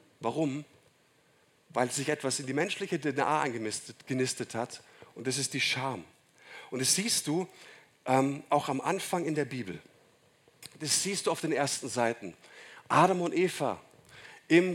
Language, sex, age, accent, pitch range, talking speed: German, male, 50-69, German, 135-165 Hz, 150 wpm